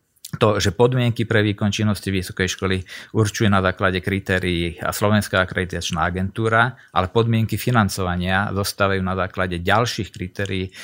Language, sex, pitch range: Slovak, male, 95-110 Hz